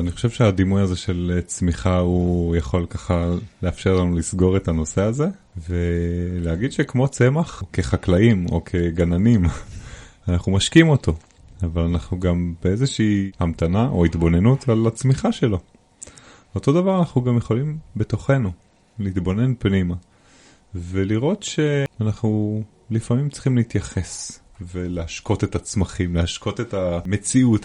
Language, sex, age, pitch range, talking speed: Hebrew, male, 30-49, 90-110 Hz, 115 wpm